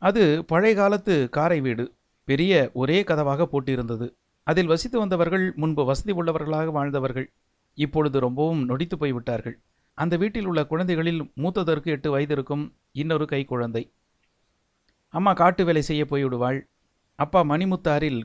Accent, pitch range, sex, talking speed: native, 130-170 Hz, male, 120 wpm